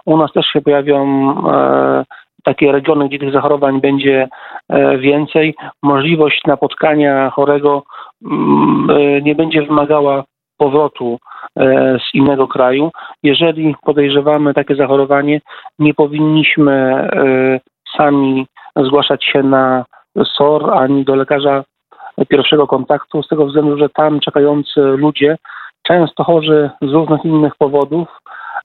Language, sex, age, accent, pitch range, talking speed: Polish, male, 40-59, native, 140-150 Hz, 105 wpm